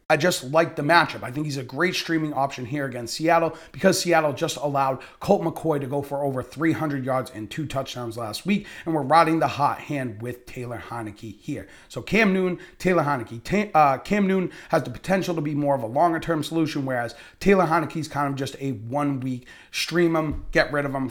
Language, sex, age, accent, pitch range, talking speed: English, male, 30-49, American, 135-165 Hz, 215 wpm